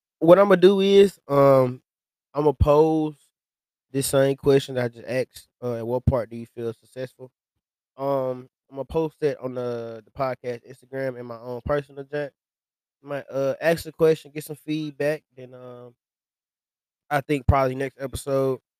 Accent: American